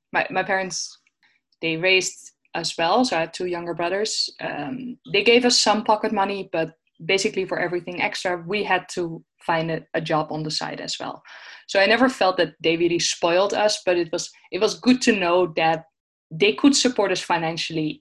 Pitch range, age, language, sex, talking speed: 160-210 Hz, 20-39, English, female, 200 wpm